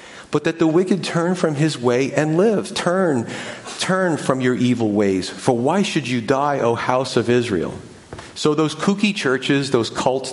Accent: American